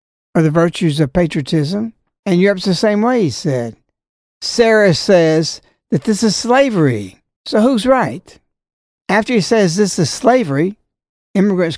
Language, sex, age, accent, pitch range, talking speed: English, male, 60-79, American, 160-225 Hz, 145 wpm